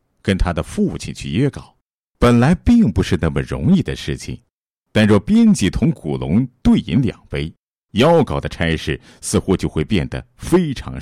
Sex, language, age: male, Chinese, 50-69